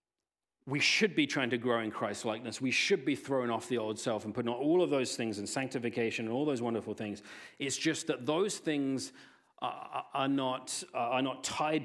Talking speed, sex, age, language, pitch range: 210 wpm, male, 40-59, English, 120-160 Hz